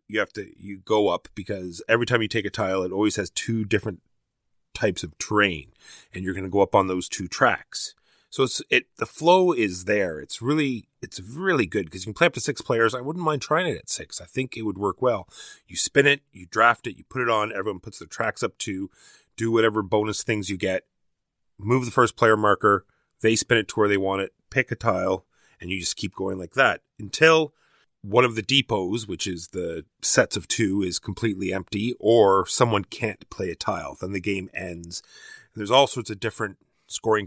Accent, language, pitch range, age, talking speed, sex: American, English, 95-120 Hz, 30-49, 220 wpm, male